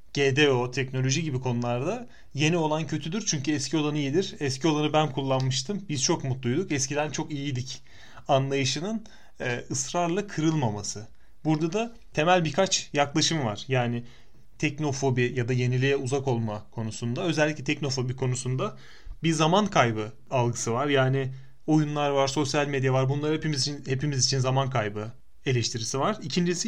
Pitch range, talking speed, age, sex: 130-160 Hz, 140 wpm, 30-49, male